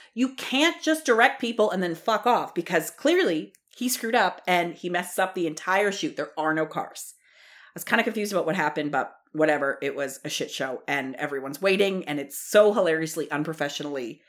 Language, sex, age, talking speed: English, female, 30-49, 200 wpm